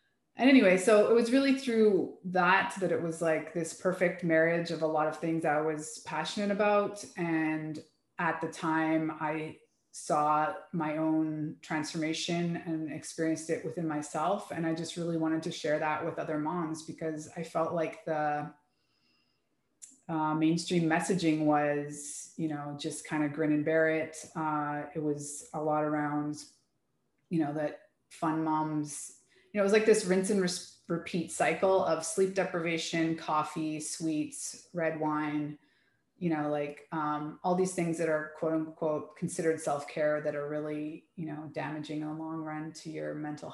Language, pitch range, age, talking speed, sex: English, 155-170 Hz, 30-49, 170 wpm, female